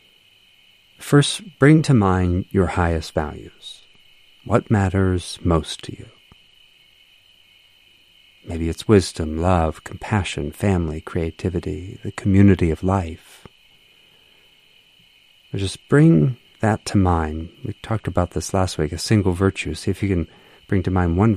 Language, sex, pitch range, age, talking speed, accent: English, male, 90-110 Hz, 50-69, 125 wpm, American